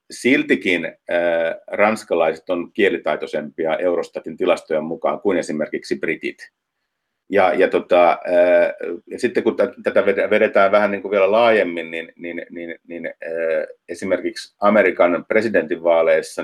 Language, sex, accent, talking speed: Finnish, male, native, 115 wpm